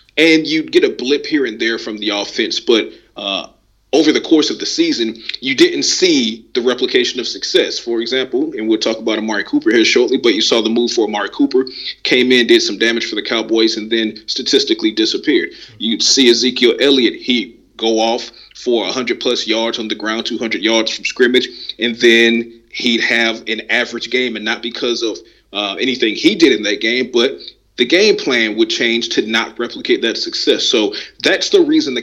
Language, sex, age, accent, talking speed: English, male, 30-49, American, 200 wpm